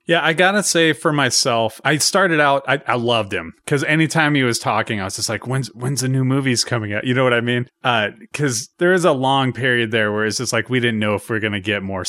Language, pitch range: English, 110-150 Hz